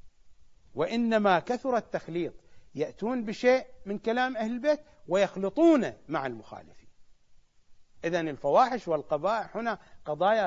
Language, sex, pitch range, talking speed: English, male, 150-205 Hz, 95 wpm